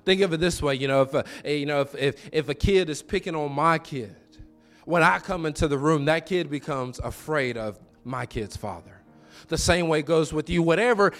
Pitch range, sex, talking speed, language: 150-205 Hz, male, 230 wpm, English